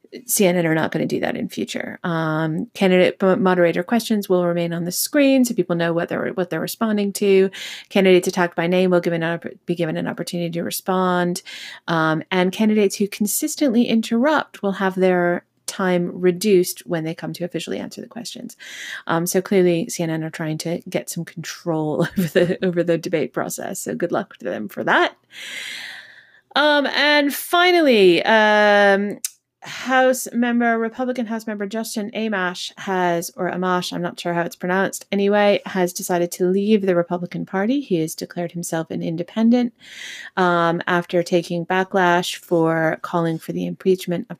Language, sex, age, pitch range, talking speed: English, female, 30-49, 170-205 Hz, 165 wpm